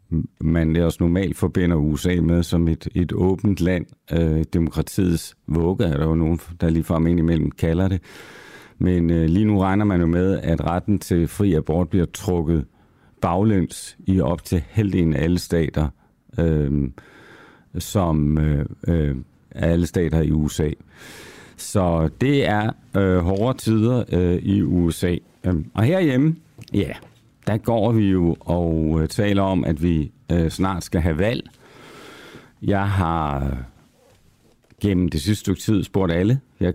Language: Danish